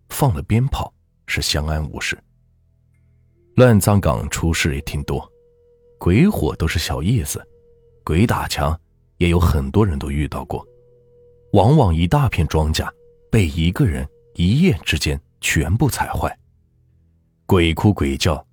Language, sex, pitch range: Chinese, male, 80-120 Hz